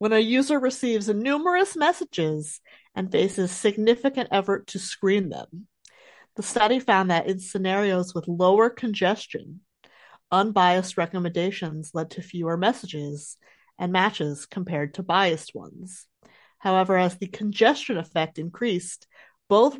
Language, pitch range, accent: English, 175-240 Hz, American